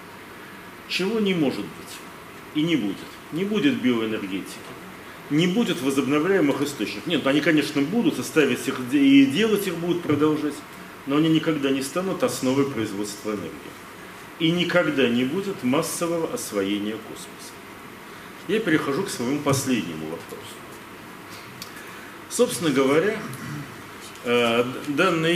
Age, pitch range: 40-59, 125-175 Hz